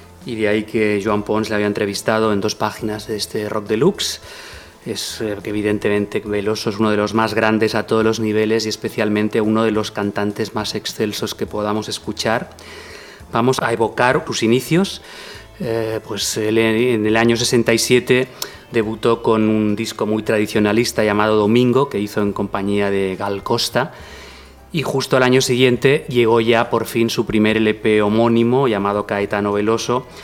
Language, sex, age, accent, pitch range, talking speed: Spanish, male, 30-49, Spanish, 105-115 Hz, 165 wpm